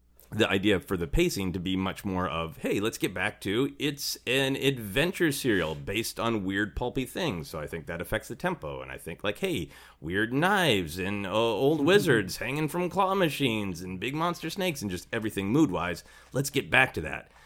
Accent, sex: American, male